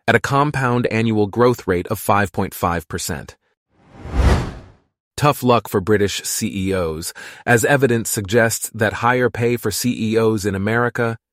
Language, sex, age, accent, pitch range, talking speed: English, male, 30-49, American, 100-120 Hz, 120 wpm